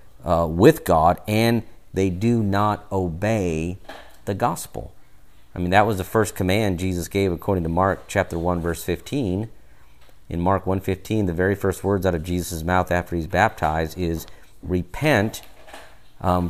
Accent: American